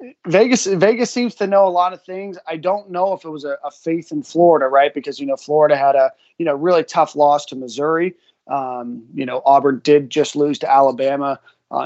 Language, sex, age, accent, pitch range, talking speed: English, male, 30-49, American, 135-165 Hz, 225 wpm